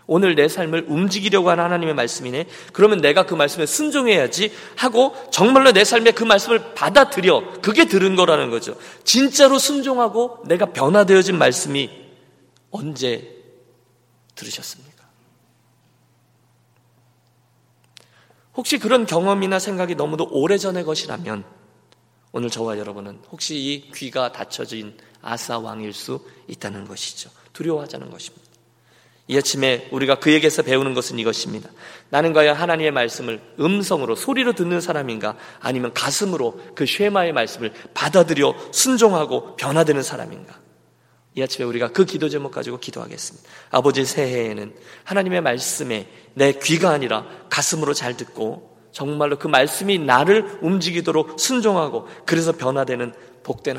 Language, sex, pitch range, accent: Korean, male, 120-190 Hz, native